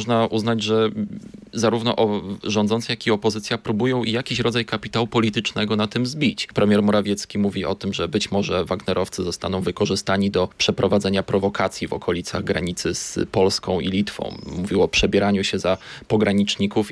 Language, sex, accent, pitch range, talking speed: Polish, male, native, 100-110 Hz, 155 wpm